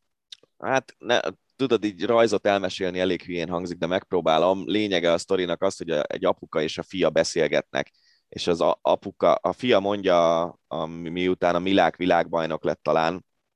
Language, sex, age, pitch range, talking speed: Hungarian, male, 20-39, 85-100 Hz, 160 wpm